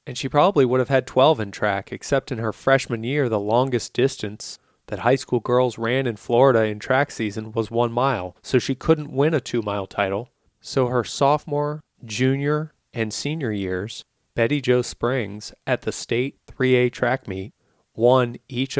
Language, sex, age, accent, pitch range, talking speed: English, male, 30-49, American, 105-130 Hz, 175 wpm